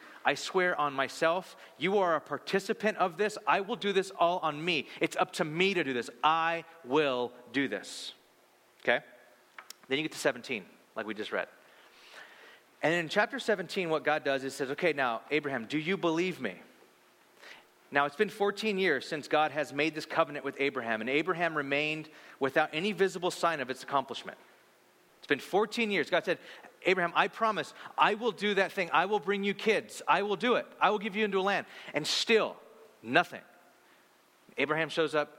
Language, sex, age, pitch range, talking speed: English, male, 30-49, 145-200 Hz, 190 wpm